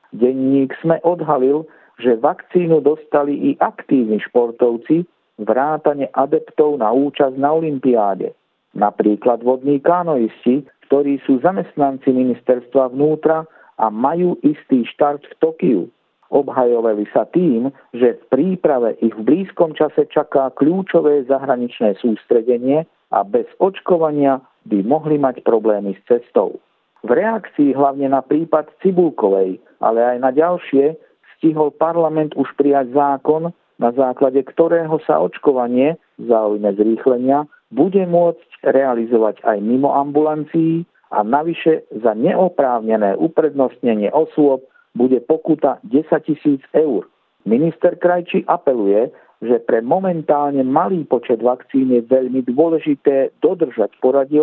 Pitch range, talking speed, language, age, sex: 130-160 Hz, 115 wpm, Slovak, 50-69, male